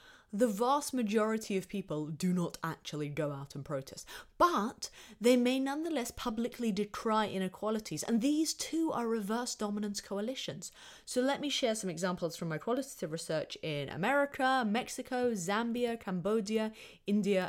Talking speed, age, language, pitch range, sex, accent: 145 wpm, 30-49, English, 180-270 Hz, female, British